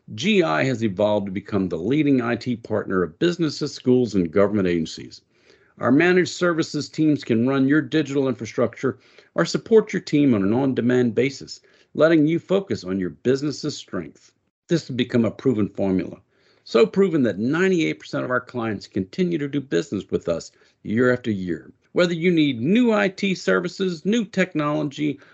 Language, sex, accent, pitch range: English, male, American, 110-170 Hz